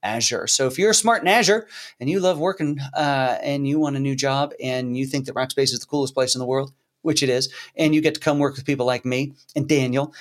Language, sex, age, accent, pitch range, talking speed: English, male, 40-59, American, 140-180 Hz, 265 wpm